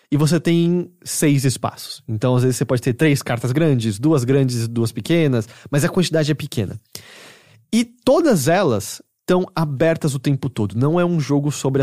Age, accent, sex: 20-39, Brazilian, male